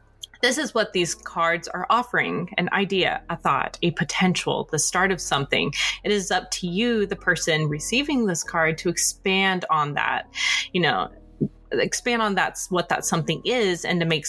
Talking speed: 180 wpm